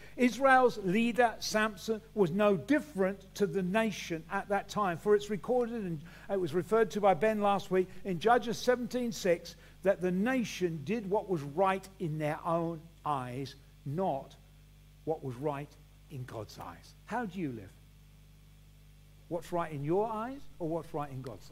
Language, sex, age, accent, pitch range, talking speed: English, male, 50-69, British, 150-220 Hz, 165 wpm